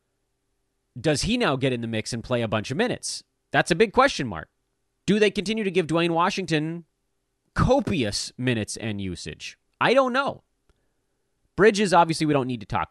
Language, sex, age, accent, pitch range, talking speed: English, male, 30-49, American, 105-170 Hz, 180 wpm